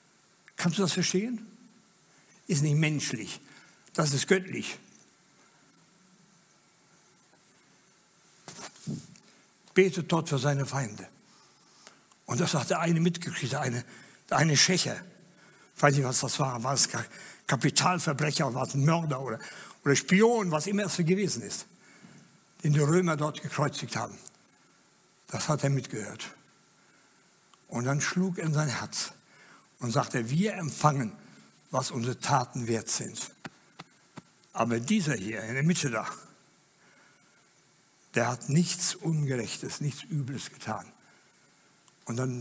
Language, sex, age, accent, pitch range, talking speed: German, male, 60-79, German, 140-190 Hz, 125 wpm